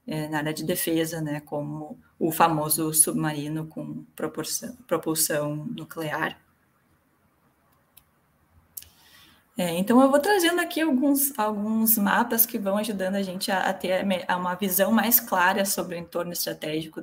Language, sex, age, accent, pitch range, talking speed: Portuguese, female, 20-39, Brazilian, 165-225 Hz, 125 wpm